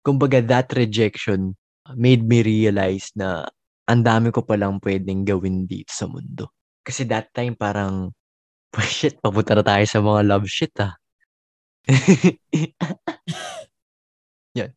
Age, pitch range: 20-39, 100-130 Hz